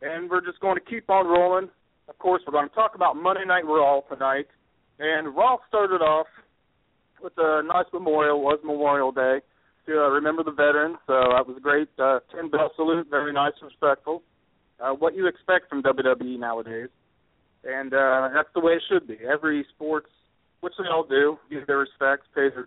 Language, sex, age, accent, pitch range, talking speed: English, male, 40-59, American, 135-170 Hz, 200 wpm